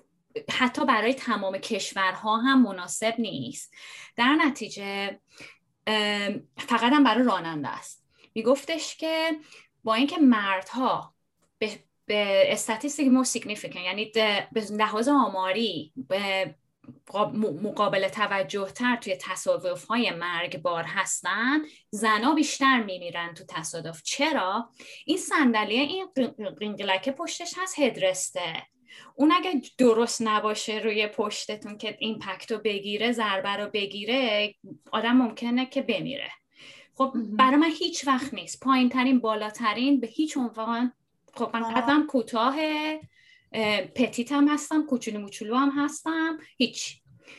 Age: 20-39